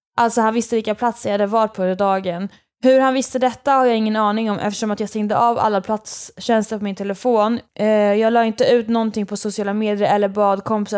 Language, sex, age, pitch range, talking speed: Swedish, female, 20-39, 210-235 Hz, 225 wpm